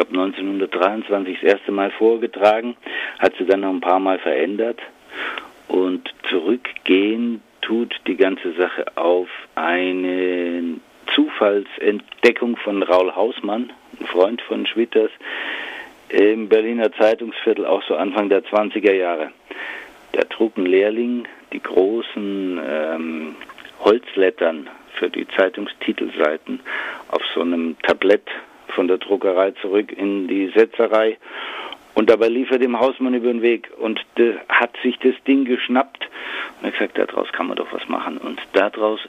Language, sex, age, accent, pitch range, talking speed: German, male, 50-69, German, 95-130 Hz, 135 wpm